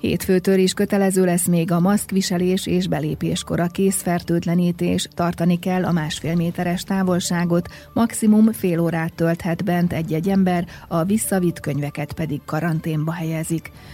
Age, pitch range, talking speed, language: 30-49, 160-190 Hz, 125 wpm, Hungarian